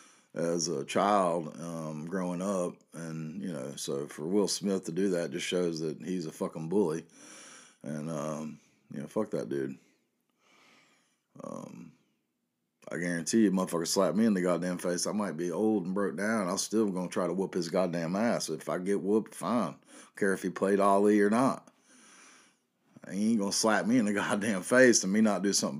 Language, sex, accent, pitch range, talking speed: English, male, American, 85-105 Hz, 200 wpm